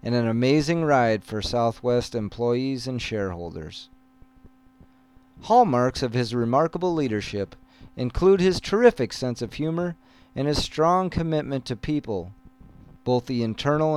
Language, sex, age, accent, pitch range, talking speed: English, male, 40-59, American, 115-155 Hz, 125 wpm